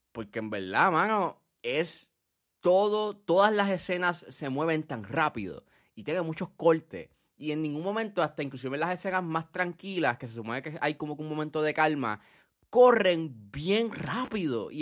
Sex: male